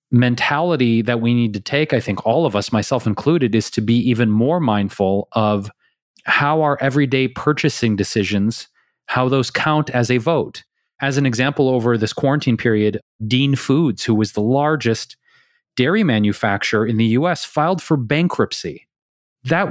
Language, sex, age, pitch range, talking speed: English, male, 30-49, 115-150 Hz, 160 wpm